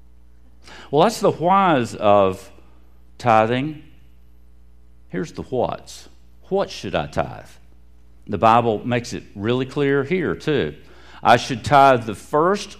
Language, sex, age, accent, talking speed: English, male, 50-69, American, 120 wpm